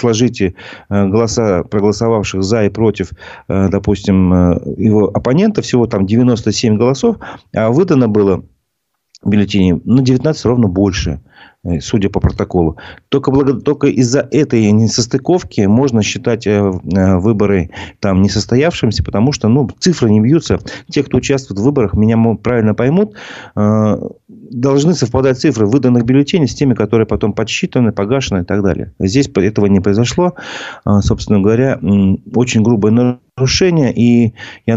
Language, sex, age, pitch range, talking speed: Russian, male, 40-59, 100-130 Hz, 125 wpm